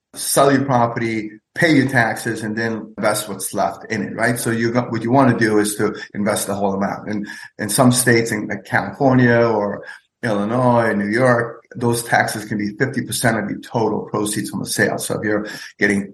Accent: American